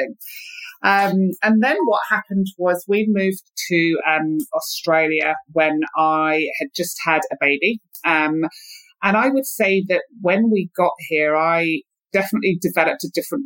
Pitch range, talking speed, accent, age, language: 160-200 Hz, 145 wpm, British, 30-49, English